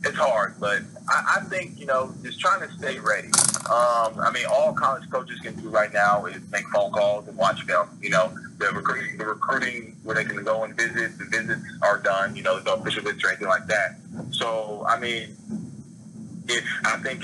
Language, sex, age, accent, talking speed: English, male, 20-39, American, 210 wpm